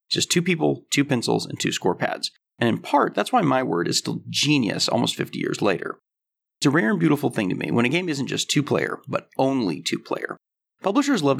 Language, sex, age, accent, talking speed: English, male, 30-49, American, 220 wpm